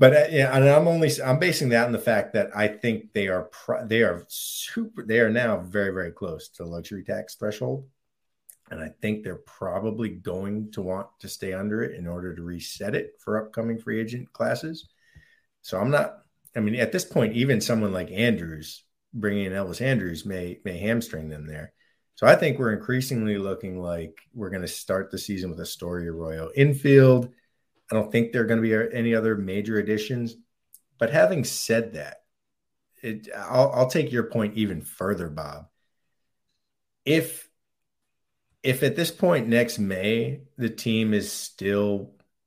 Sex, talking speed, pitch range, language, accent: male, 180 wpm, 95-120 Hz, English, American